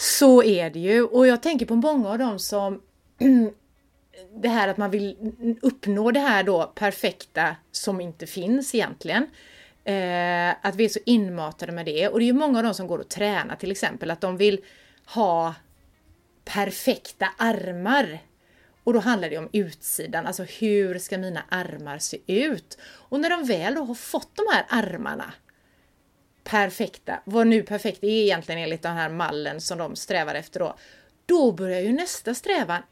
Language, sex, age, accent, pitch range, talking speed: Swedish, female, 30-49, native, 185-250 Hz, 175 wpm